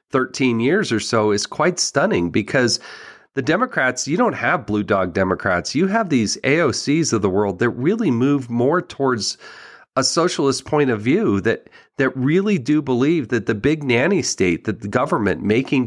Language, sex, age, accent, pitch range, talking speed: English, male, 40-59, American, 115-155 Hz, 180 wpm